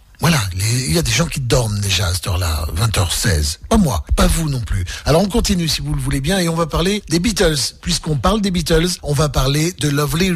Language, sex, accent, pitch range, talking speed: French, male, French, 110-155 Hz, 245 wpm